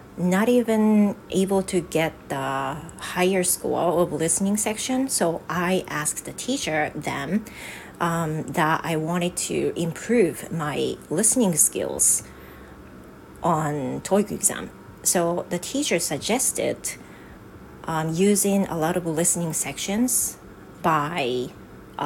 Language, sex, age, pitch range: Japanese, female, 30-49, 155-200 Hz